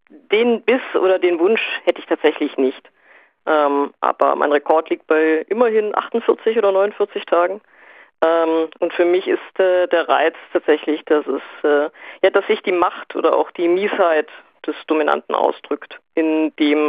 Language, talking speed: German, 160 wpm